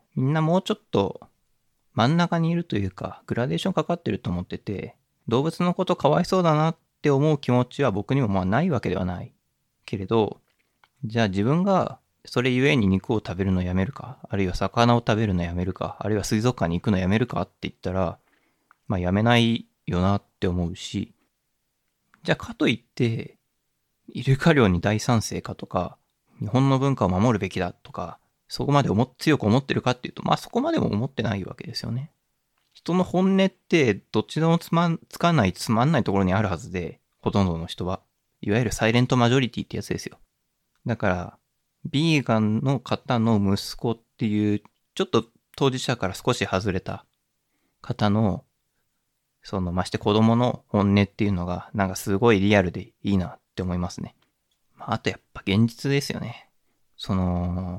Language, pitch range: Japanese, 95-135 Hz